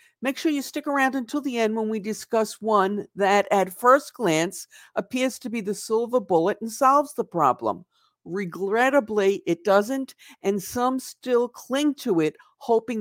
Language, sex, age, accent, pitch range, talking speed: English, female, 50-69, American, 185-230 Hz, 165 wpm